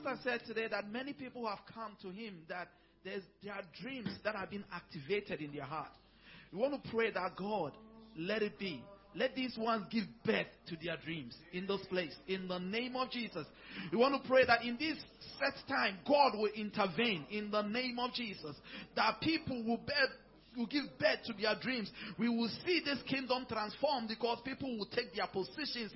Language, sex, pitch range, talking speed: English, male, 225-310 Hz, 190 wpm